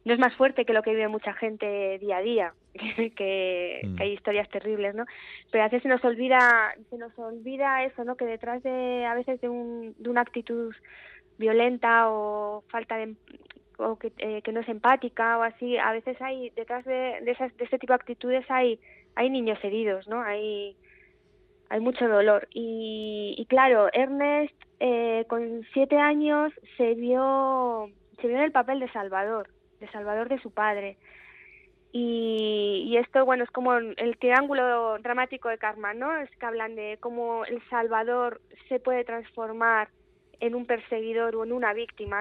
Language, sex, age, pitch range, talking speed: Spanish, female, 20-39, 215-250 Hz, 175 wpm